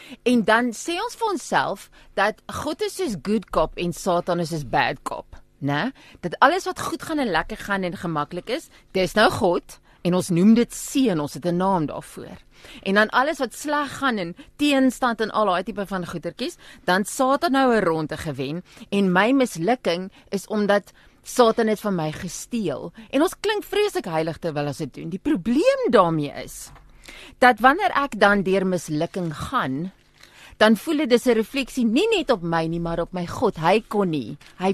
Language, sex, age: English, female, 30-49